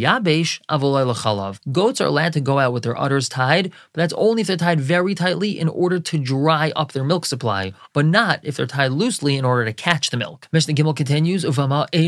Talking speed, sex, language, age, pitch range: 205 wpm, male, English, 20-39, 130-160 Hz